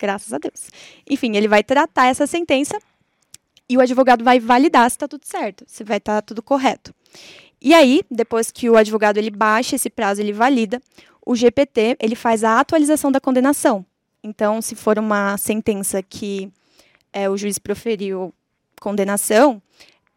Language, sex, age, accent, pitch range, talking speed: Portuguese, female, 10-29, Brazilian, 220-285 Hz, 150 wpm